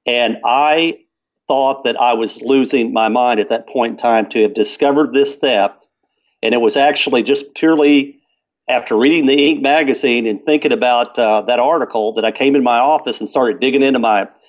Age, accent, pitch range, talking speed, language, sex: 50-69, American, 120-145 Hz, 195 wpm, English, male